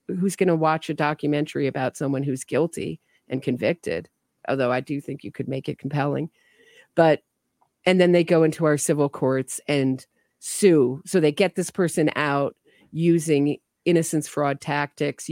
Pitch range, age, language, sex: 145-180 Hz, 40-59, English, female